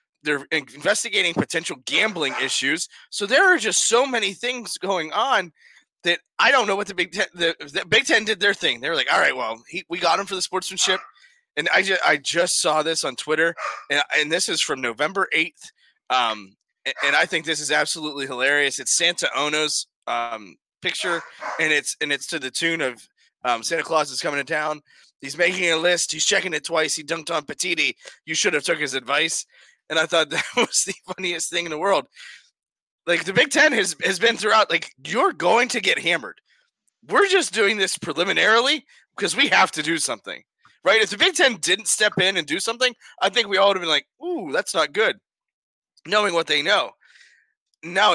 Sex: male